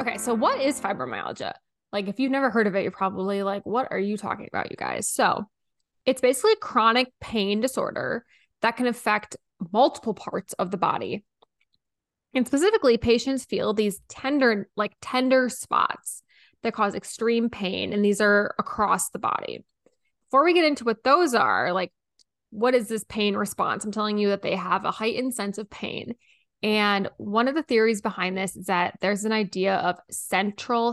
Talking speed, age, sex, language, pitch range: 180 wpm, 10-29, female, English, 200-250 Hz